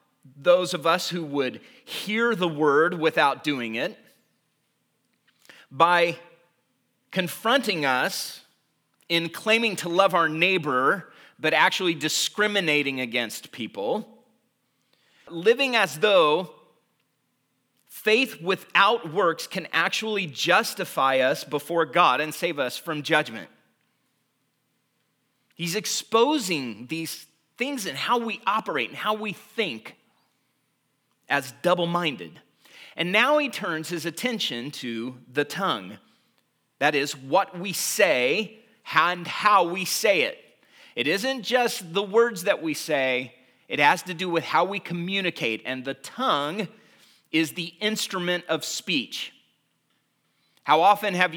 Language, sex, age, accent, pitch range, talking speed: English, male, 30-49, American, 150-200 Hz, 120 wpm